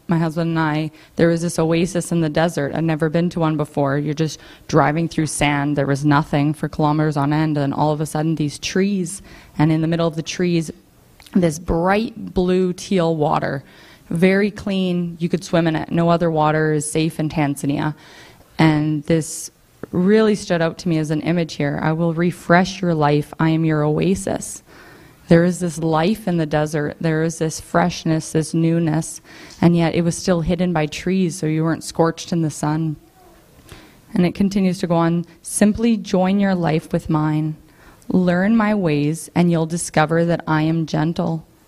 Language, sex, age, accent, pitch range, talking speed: English, female, 20-39, American, 155-175 Hz, 190 wpm